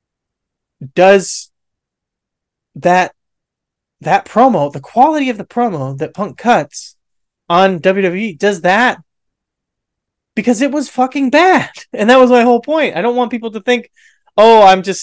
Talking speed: 145 wpm